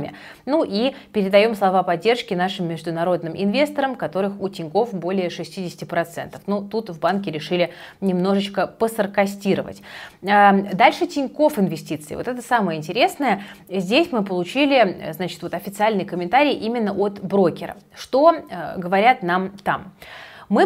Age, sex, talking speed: 30-49, female, 120 wpm